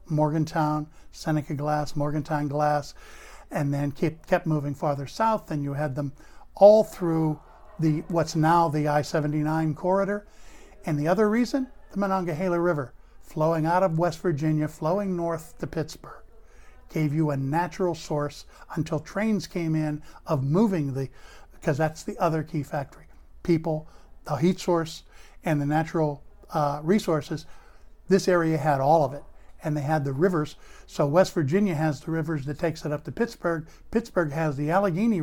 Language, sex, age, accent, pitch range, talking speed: English, male, 50-69, American, 150-175 Hz, 160 wpm